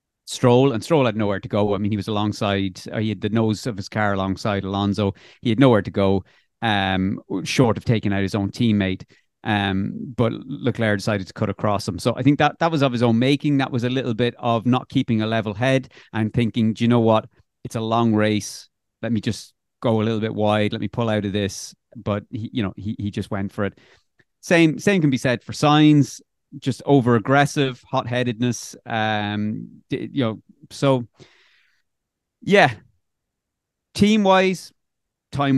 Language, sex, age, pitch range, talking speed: English, male, 30-49, 105-130 Hz, 190 wpm